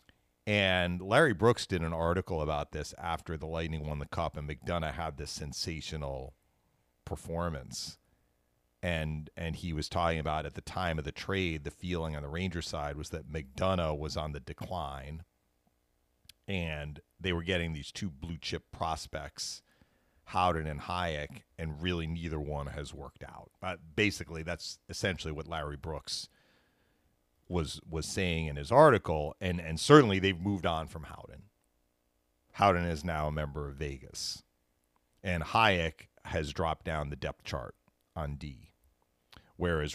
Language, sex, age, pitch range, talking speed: English, male, 40-59, 75-85 Hz, 155 wpm